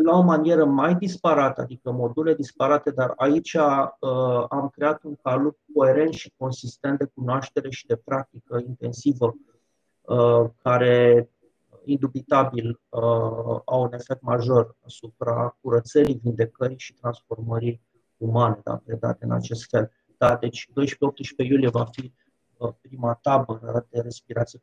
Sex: male